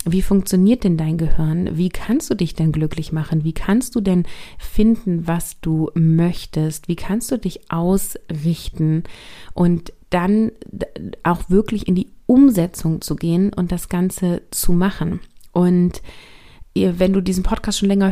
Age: 30-49